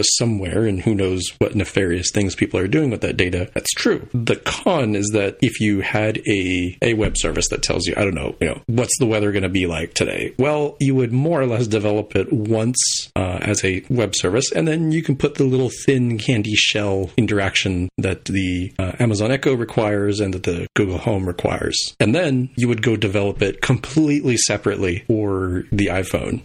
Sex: male